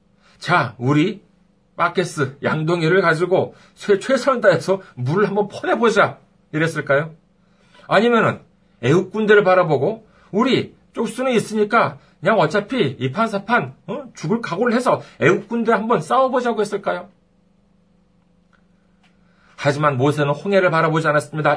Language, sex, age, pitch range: Korean, male, 40-59, 145-210 Hz